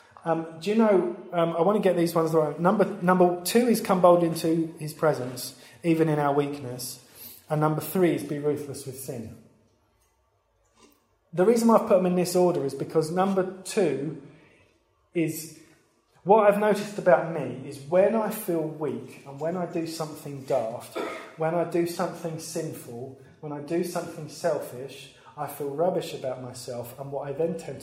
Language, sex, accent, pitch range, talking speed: English, male, British, 135-180 Hz, 180 wpm